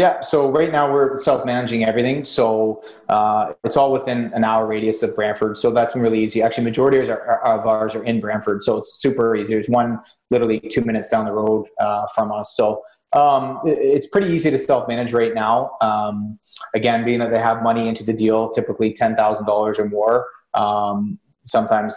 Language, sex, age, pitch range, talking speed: English, male, 30-49, 110-120 Hz, 190 wpm